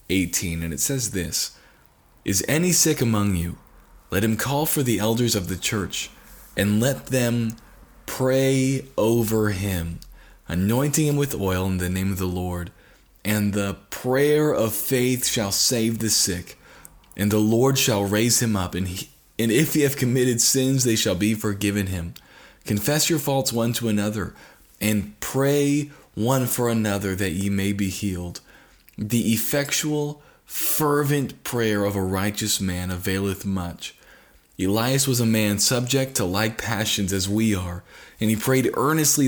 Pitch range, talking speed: 95-125 Hz, 160 wpm